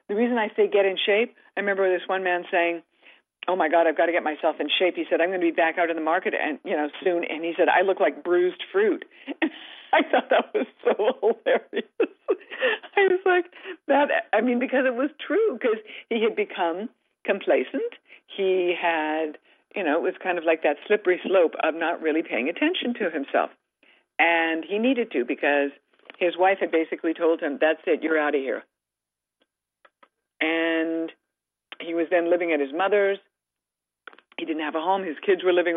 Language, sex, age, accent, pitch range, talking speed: English, female, 50-69, American, 165-245 Hz, 205 wpm